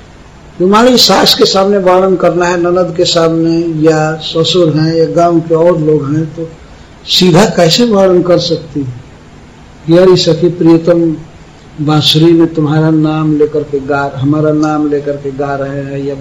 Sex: male